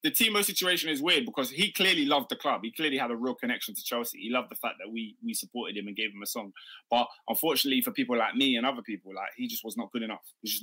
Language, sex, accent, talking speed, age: English, male, British, 295 wpm, 20-39